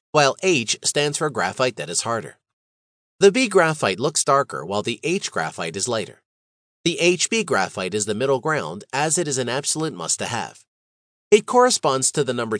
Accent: American